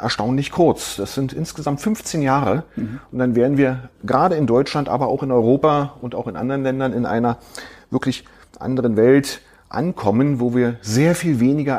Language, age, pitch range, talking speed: German, 40-59, 115-140 Hz, 175 wpm